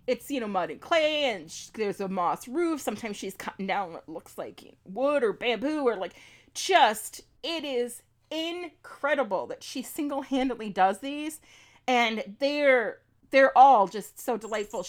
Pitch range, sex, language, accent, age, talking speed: 200-280 Hz, female, English, American, 30-49, 170 wpm